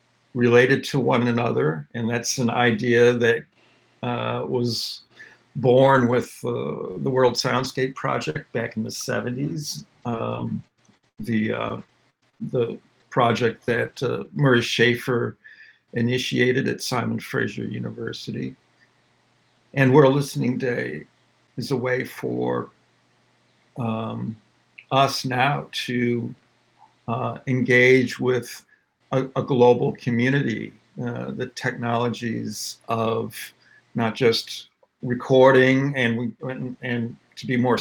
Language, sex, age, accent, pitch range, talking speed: English, male, 60-79, American, 120-130 Hz, 105 wpm